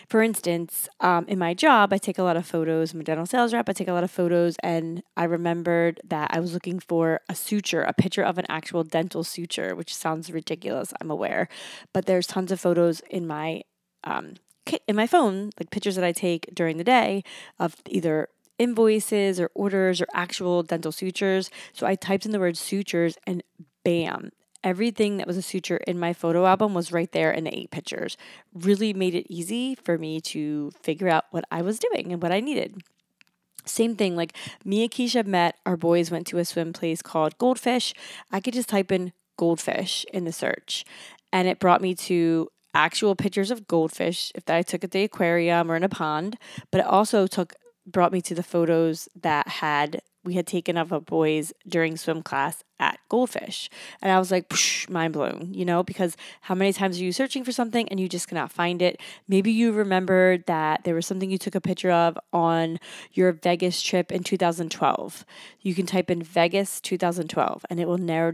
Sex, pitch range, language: female, 170-195 Hz, English